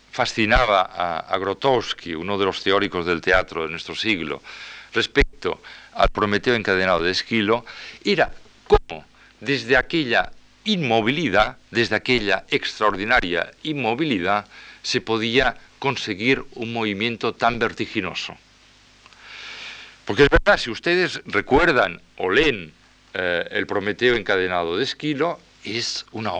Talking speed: 115 wpm